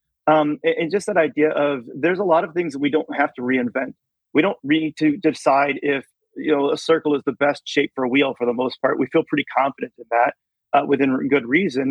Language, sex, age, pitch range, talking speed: English, male, 30-49, 135-155 Hz, 245 wpm